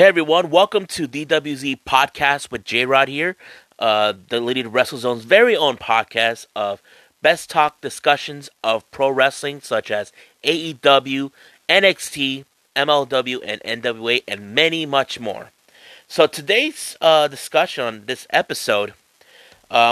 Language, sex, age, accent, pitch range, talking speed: English, male, 30-49, American, 115-155 Hz, 130 wpm